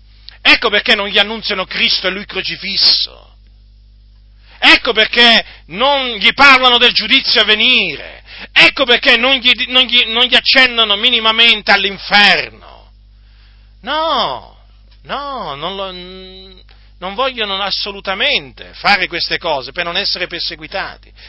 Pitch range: 165-235 Hz